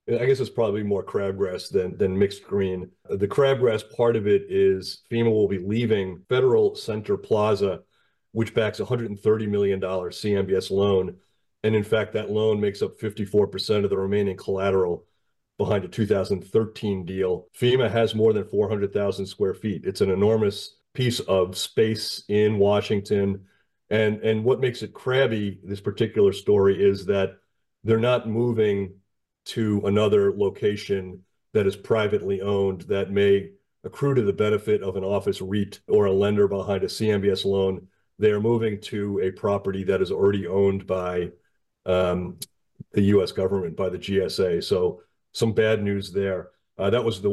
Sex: male